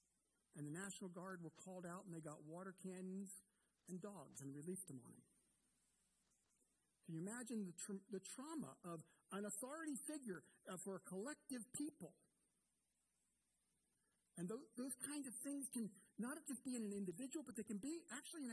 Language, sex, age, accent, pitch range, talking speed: English, male, 50-69, American, 140-225 Hz, 170 wpm